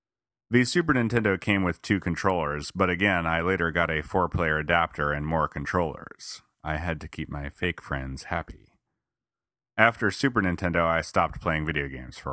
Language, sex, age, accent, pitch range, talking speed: English, male, 30-49, American, 80-100 Hz, 170 wpm